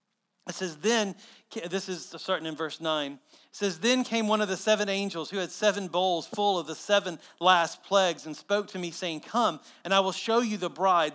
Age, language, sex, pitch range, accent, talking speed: 40-59, English, male, 160-205 Hz, American, 220 wpm